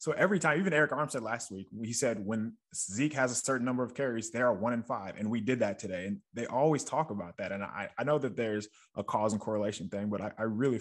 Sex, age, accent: male, 20-39, American